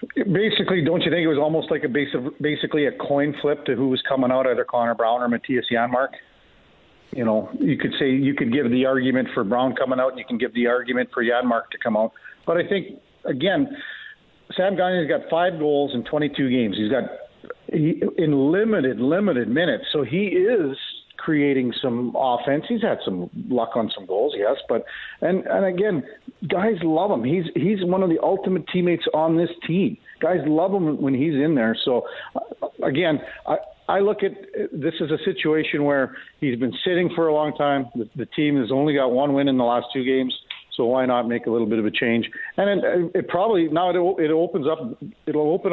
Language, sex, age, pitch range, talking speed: English, male, 50-69, 125-180 Hz, 210 wpm